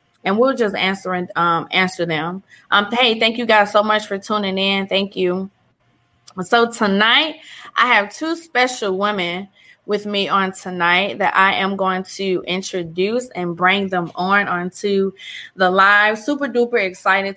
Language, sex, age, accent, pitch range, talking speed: English, female, 20-39, American, 180-225 Hz, 160 wpm